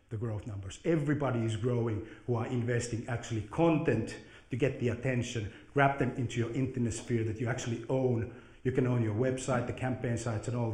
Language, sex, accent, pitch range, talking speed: Finnish, male, native, 110-160 Hz, 195 wpm